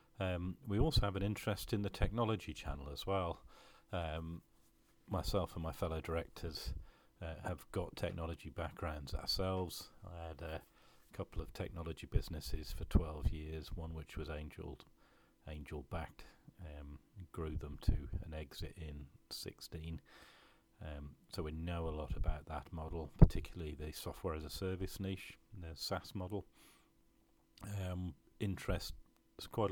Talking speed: 140 wpm